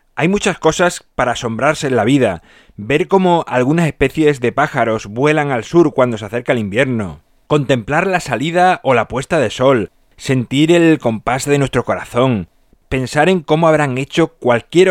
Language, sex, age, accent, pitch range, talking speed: Spanish, male, 30-49, Spanish, 120-150 Hz, 170 wpm